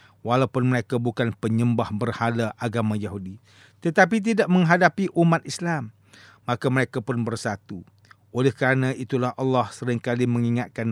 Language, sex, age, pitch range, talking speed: English, male, 50-69, 120-155 Hz, 120 wpm